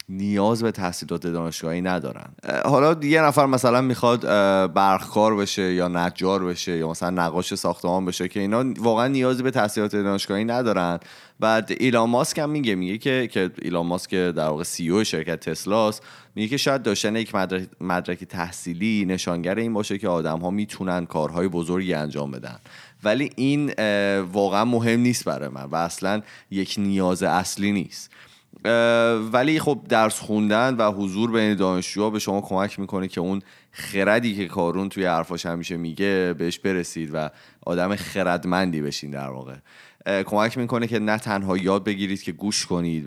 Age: 30-49